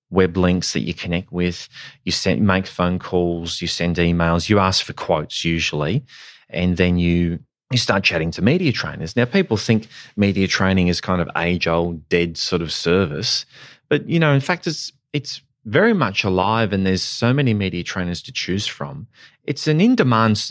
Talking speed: 185 wpm